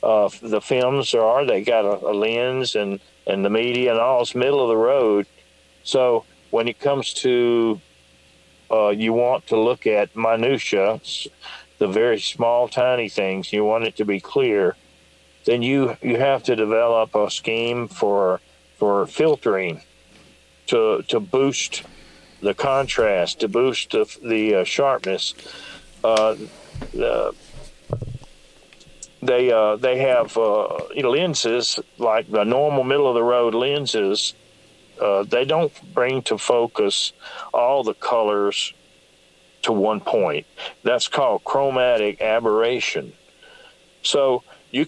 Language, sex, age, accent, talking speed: English, male, 50-69, American, 130 wpm